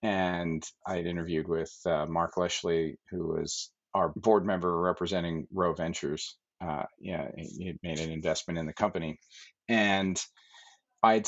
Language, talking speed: English, 155 wpm